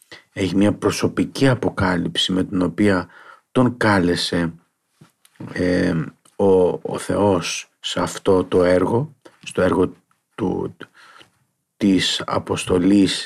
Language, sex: Greek, male